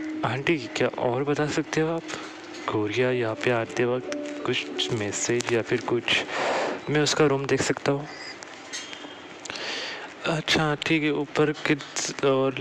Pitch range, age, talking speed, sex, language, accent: 110-145 Hz, 30-49, 140 wpm, male, Hindi, native